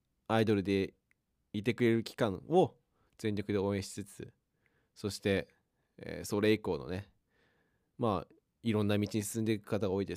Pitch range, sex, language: 95-125 Hz, male, Japanese